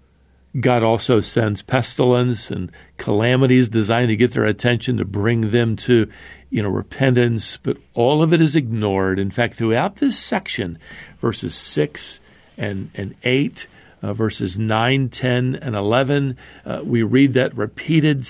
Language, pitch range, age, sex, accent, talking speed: English, 105-135 Hz, 50-69, male, American, 140 wpm